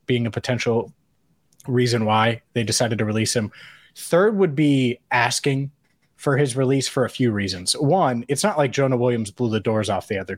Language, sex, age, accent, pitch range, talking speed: English, male, 20-39, American, 115-140 Hz, 190 wpm